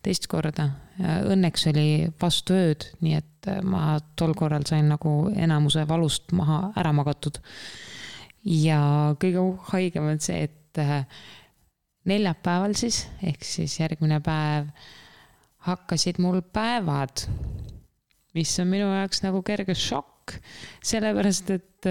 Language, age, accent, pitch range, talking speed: English, 20-39, Finnish, 155-185 Hz, 110 wpm